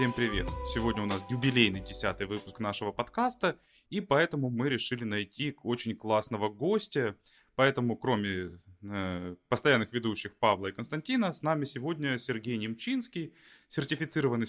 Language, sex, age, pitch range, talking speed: Ukrainian, male, 20-39, 105-145 Hz, 135 wpm